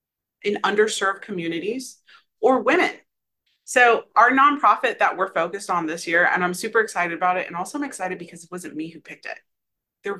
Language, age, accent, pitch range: English, 30-49, American, 180-265 Hz